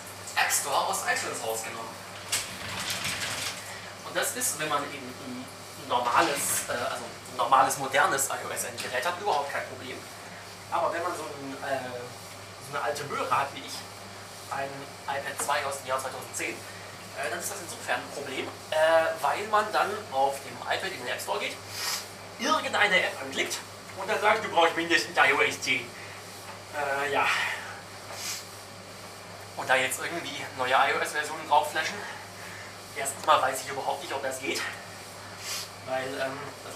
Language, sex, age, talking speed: German, male, 30-49, 155 wpm